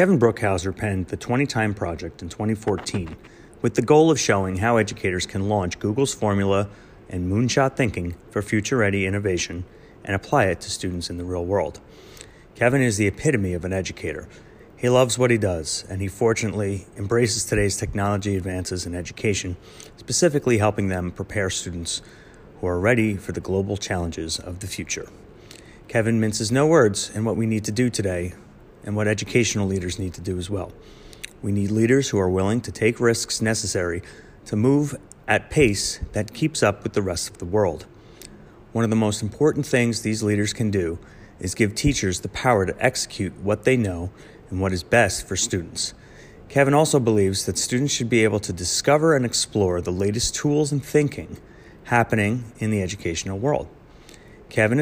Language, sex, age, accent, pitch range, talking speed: English, male, 30-49, American, 95-120 Hz, 180 wpm